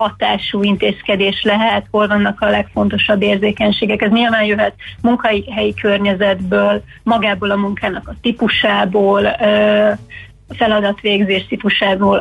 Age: 30-49